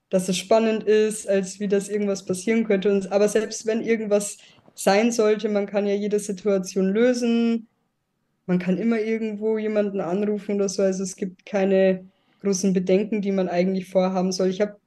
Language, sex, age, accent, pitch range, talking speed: German, female, 20-39, German, 205-235 Hz, 175 wpm